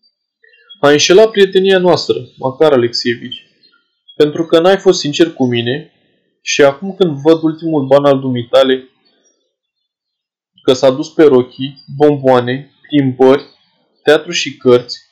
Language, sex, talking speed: Romanian, male, 125 wpm